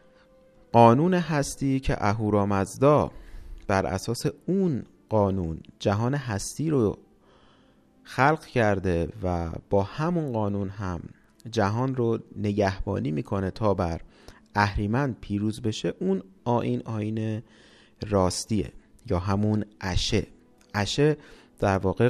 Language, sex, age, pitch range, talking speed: Persian, male, 30-49, 100-130 Hz, 100 wpm